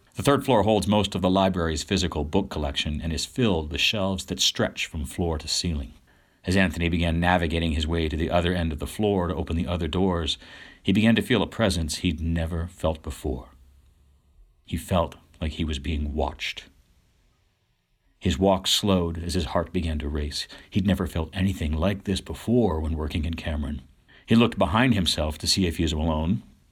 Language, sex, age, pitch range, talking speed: English, male, 60-79, 80-95 Hz, 195 wpm